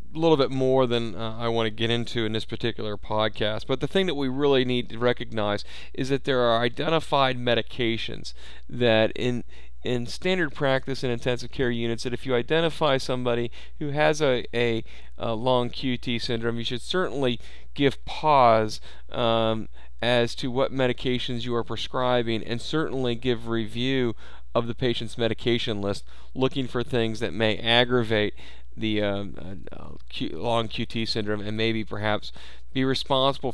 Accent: American